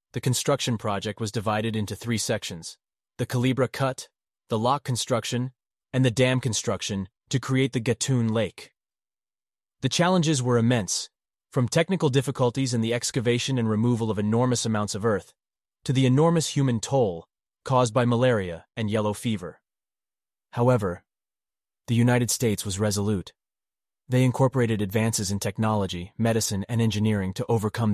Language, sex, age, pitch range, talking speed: English, male, 30-49, 105-125 Hz, 140 wpm